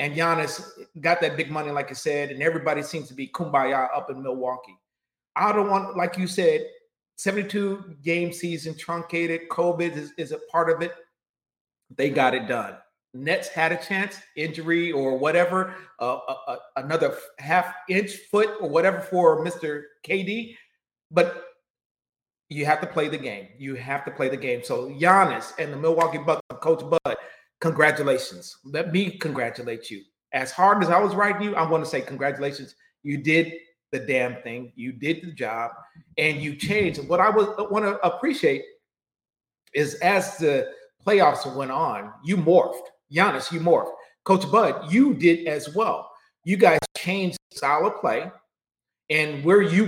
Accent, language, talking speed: American, English, 165 wpm